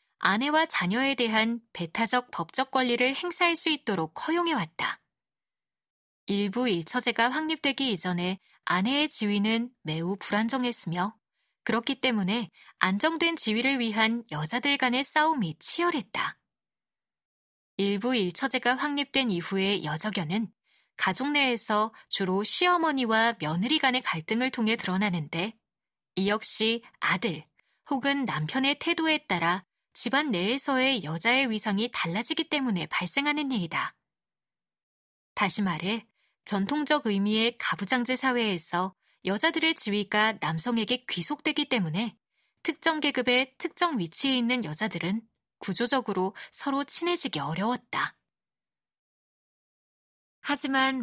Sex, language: female, Korean